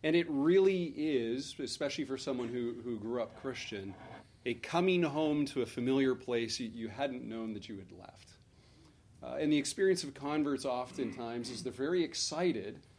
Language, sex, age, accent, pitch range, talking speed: English, male, 40-59, American, 115-150 Hz, 170 wpm